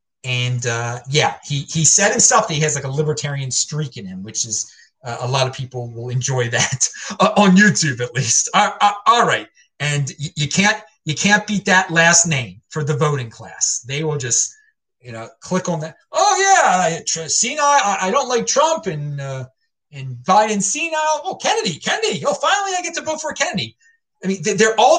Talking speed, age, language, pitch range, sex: 210 wpm, 30-49, English, 140-205 Hz, male